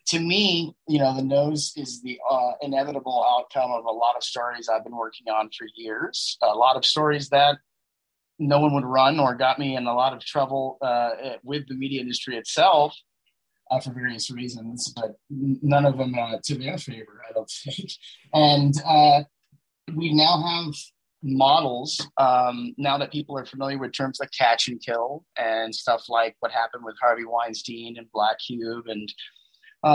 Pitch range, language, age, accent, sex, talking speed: 120-145 Hz, English, 30-49, American, male, 180 wpm